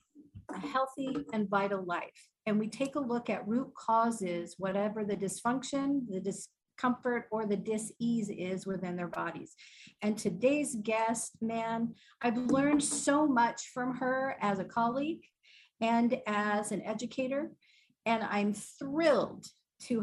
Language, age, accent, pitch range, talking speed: English, 50-69, American, 205-265 Hz, 140 wpm